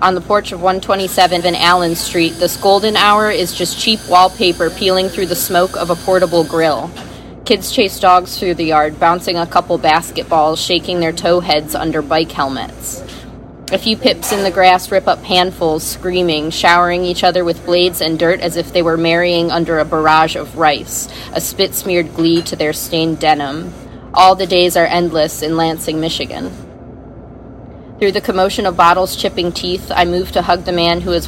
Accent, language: American, English